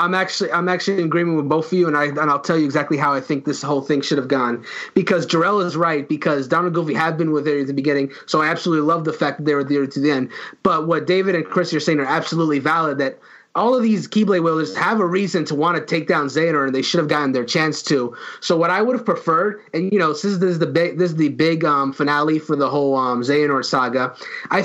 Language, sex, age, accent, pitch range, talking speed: English, male, 30-49, American, 145-175 Hz, 265 wpm